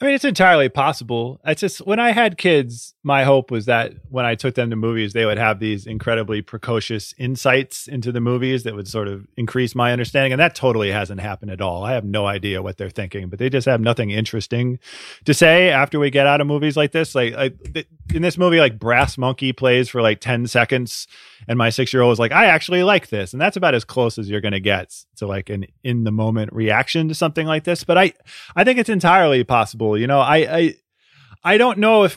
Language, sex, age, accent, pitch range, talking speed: English, male, 30-49, American, 110-140 Hz, 230 wpm